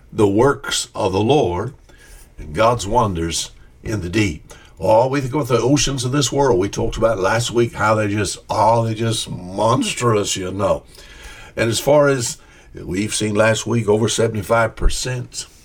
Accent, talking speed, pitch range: American, 180 wpm, 100-130 Hz